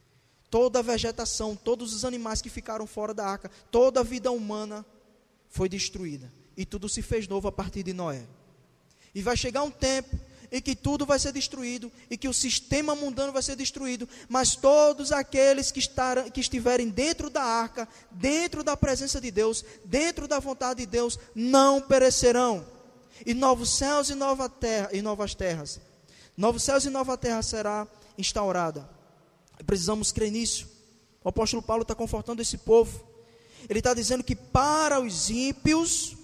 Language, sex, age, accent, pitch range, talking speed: Portuguese, male, 20-39, Brazilian, 205-270 Hz, 165 wpm